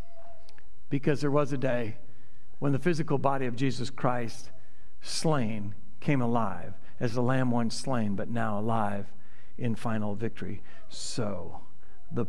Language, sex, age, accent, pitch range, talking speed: English, male, 60-79, American, 120-195 Hz, 135 wpm